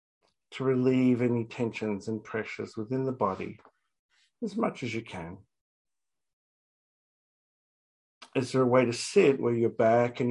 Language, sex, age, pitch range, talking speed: English, male, 50-69, 115-130 Hz, 140 wpm